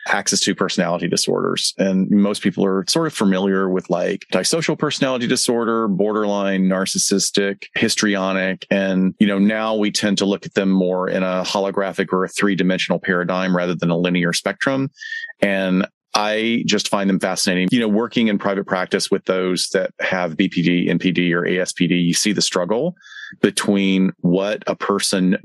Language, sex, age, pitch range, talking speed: English, male, 30-49, 90-100 Hz, 165 wpm